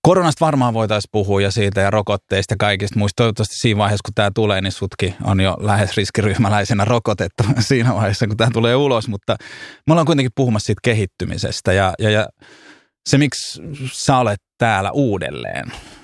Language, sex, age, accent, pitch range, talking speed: Finnish, male, 20-39, native, 95-115 Hz, 170 wpm